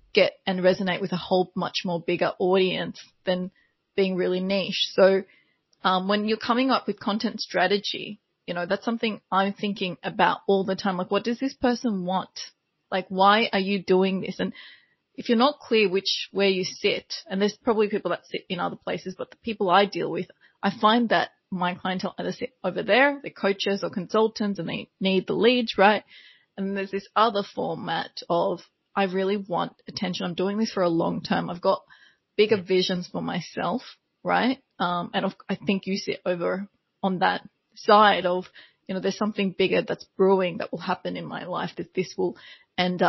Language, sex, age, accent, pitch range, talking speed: English, female, 20-39, Australian, 185-210 Hz, 195 wpm